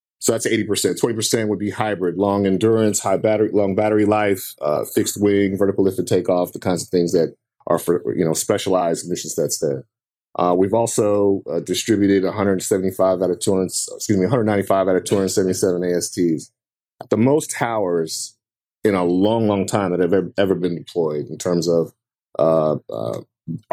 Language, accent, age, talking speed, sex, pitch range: English, American, 30-49, 190 wpm, male, 90-100 Hz